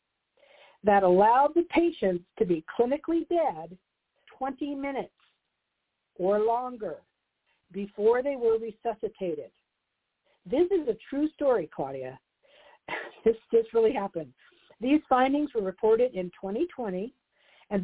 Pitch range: 200-295 Hz